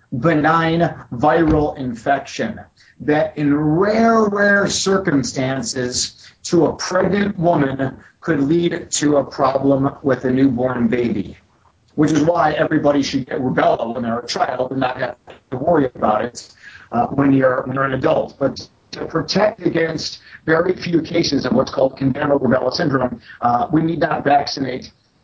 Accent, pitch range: American, 130-170 Hz